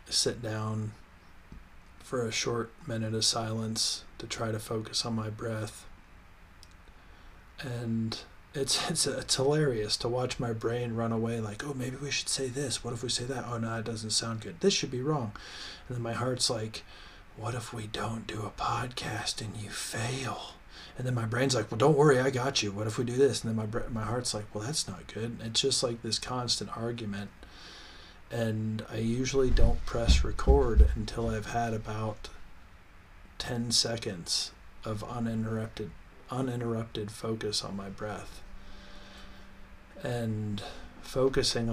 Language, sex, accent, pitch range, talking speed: English, male, American, 105-120 Hz, 170 wpm